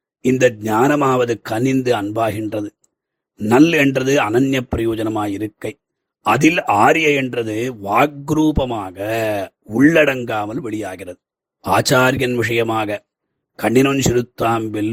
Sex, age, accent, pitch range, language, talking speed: male, 30-49, native, 115-135 Hz, Tamil, 70 wpm